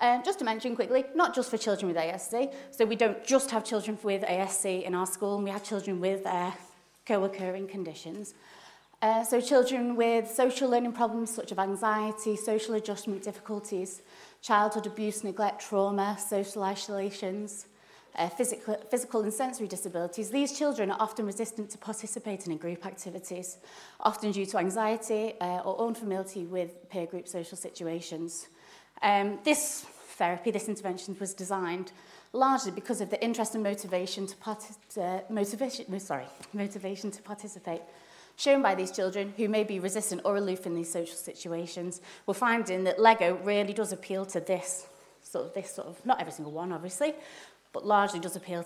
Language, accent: English, British